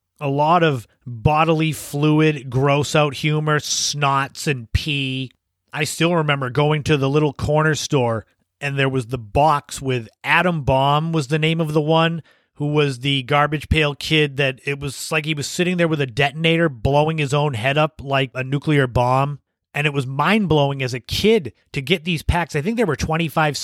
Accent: American